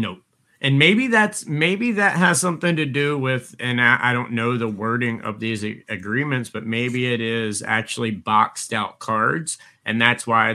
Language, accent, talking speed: English, American, 190 wpm